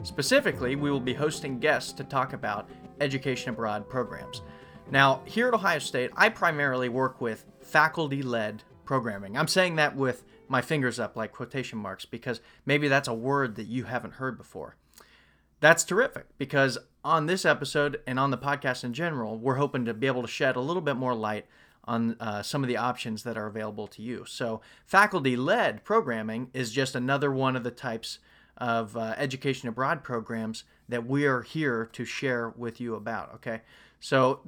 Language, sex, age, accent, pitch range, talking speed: English, male, 30-49, American, 115-145 Hz, 185 wpm